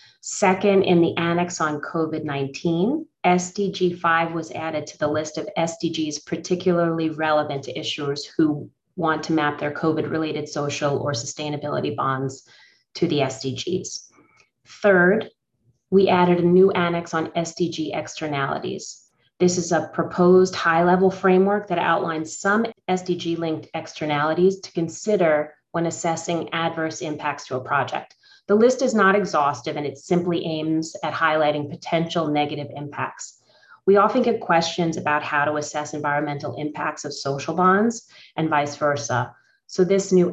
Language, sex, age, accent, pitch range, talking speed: English, female, 30-49, American, 150-175 Hz, 140 wpm